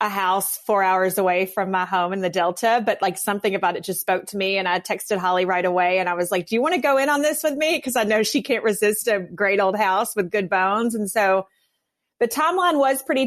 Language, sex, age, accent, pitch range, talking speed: English, female, 30-49, American, 190-255 Hz, 265 wpm